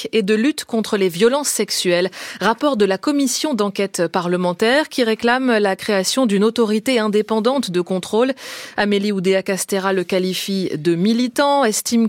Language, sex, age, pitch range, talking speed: French, female, 20-39, 190-235 Hz, 150 wpm